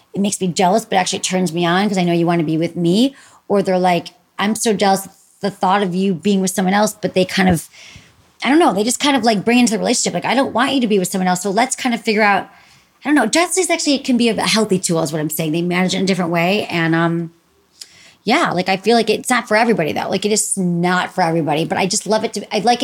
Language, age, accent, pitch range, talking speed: English, 30-49, American, 170-205 Hz, 295 wpm